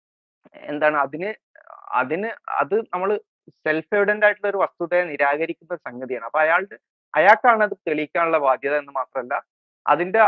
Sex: male